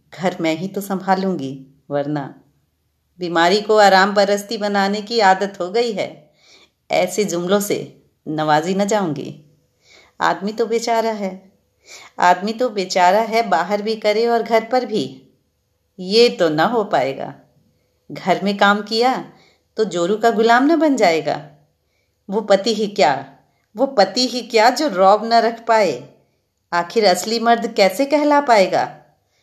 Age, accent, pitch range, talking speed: 40-59, native, 155-220 Hz, 145 wpm